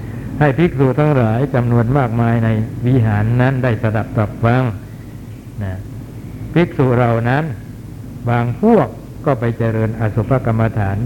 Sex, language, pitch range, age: male, Thai, 115-130 Hz, 60-79